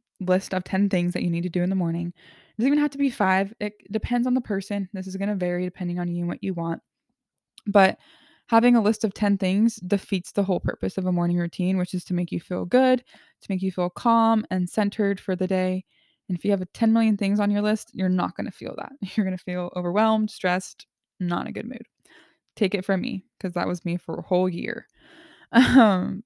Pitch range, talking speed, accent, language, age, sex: 185-225 Hz, 250 wpm, American, English, 20-39, female